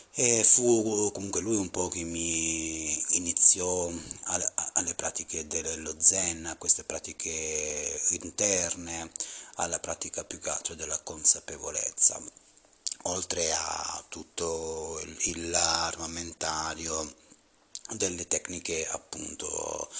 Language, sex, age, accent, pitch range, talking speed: Italian, male, 30-49, native, 80-100 Hz, 95 wpm